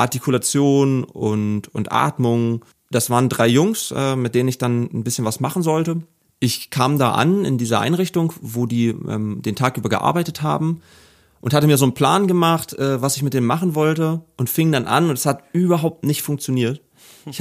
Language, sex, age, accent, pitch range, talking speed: German, male, 30-49, German, 125-155 Hz, 200 wpm